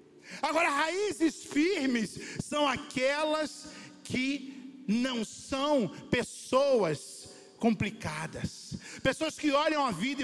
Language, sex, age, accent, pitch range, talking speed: Portuguese, male, 50-69, Brazilian, 200-290 Hz, 90 wpm